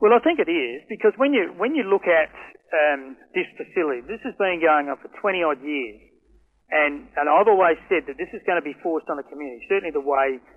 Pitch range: 140-195 Hz